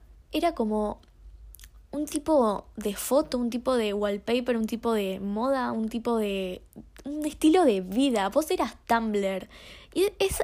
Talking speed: 150 wpm